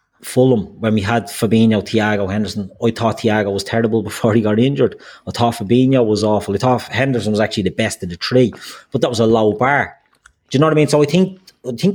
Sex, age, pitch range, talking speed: male, 30-49, 105-125 Hz, 235 wpm